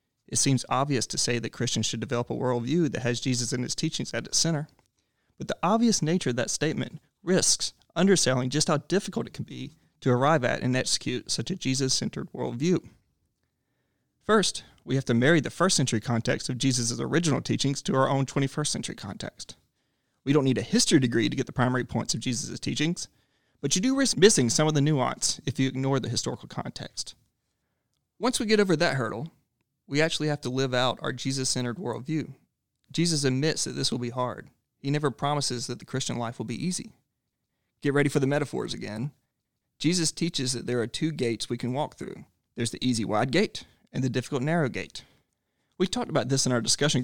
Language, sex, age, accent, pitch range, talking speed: English, male, 30-49, American, 120-155 Hz, 200 wpm